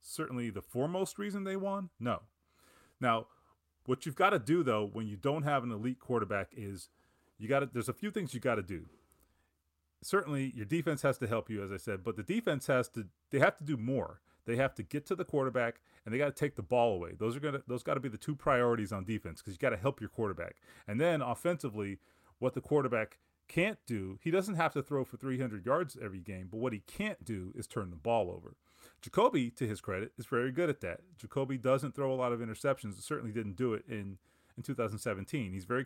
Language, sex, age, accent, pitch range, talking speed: English, male, 30-49, American, 105-135 Hz, 240 wpm